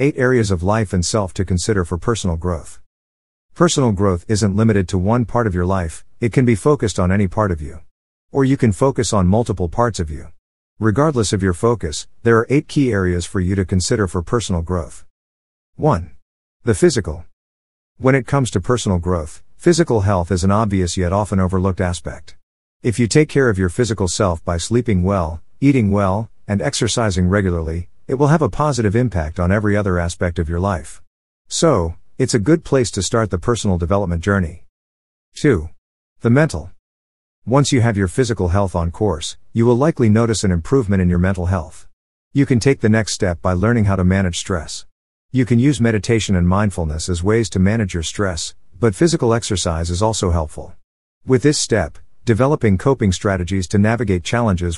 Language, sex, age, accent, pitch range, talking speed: English, male, 50-69, American, 85-115 Hz, 190 wpm